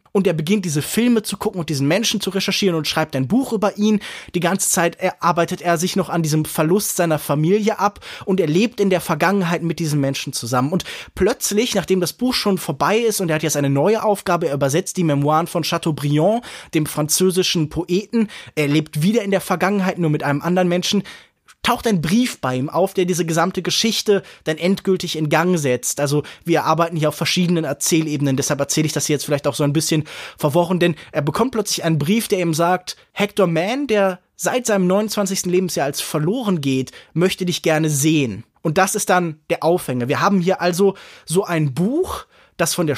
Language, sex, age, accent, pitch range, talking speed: German, male, 20-39, German, 160-205 Hz, 210 wpm